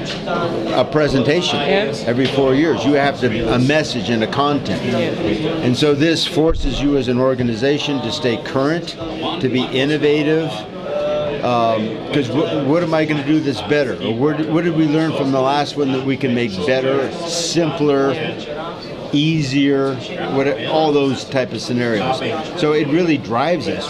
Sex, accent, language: male, American, Swedish